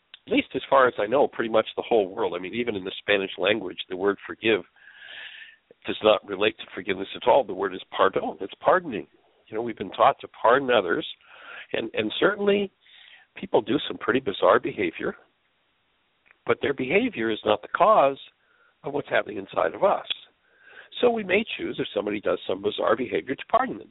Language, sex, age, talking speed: English, male, 60-79, 195 wpm